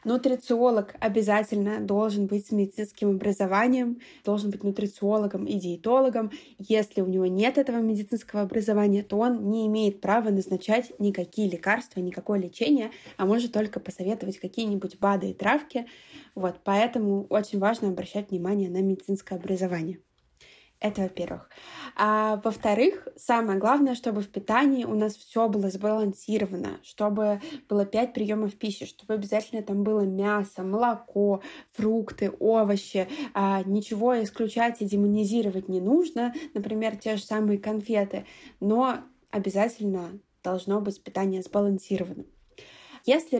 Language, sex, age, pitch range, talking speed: Russian, female, 20-39, 195-230 Hz, 125 wpm